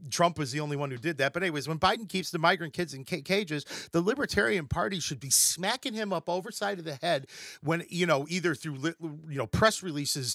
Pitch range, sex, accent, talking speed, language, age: 145-180 Hz, male, American, 230 wpm, English, 40-59